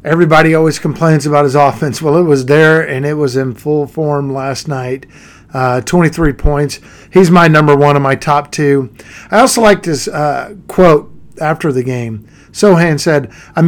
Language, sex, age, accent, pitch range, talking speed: English, male, 50-69, American, 145-180 Hz, 180 wpm